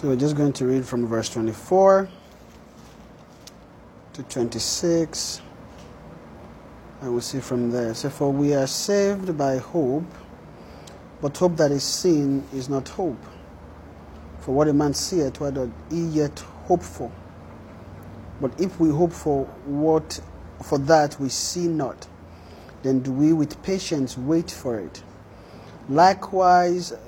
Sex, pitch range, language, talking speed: male, 125-165 Hz, English, 130 wpm